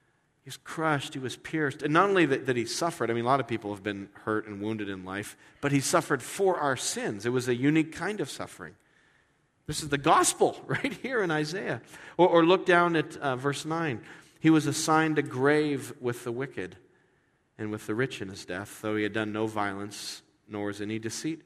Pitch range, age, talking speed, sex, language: 120-190 Hz, 40-59, 220 wpm, male, English